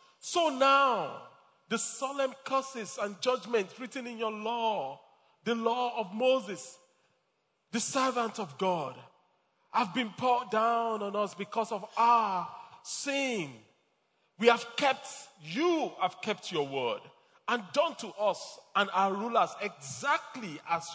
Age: 40-59